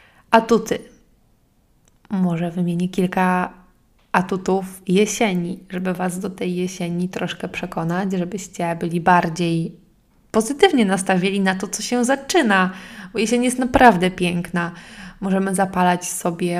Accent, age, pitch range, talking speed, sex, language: native, 20-39, 175-195 Hz, 110 wpm, female, Polish